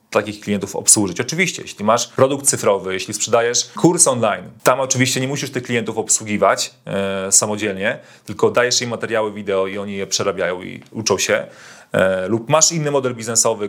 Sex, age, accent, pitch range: male, 30-49, native, 105-125 Hz